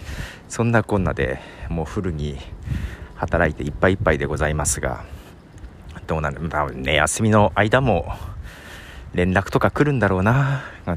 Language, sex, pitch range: Japanese, male, 80-125 Hz